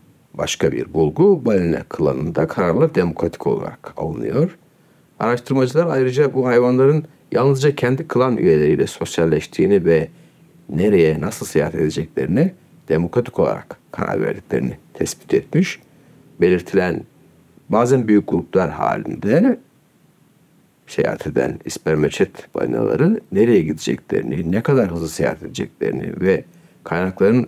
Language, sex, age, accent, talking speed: Turkish, male, 60-79, native, 105 wpm